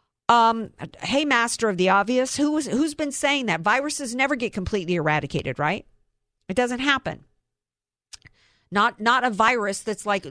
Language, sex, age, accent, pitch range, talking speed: English, female, 50-69, American, 175-240 Hz, 155 wpm